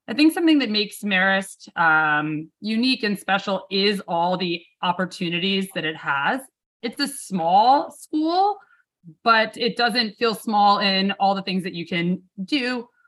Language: English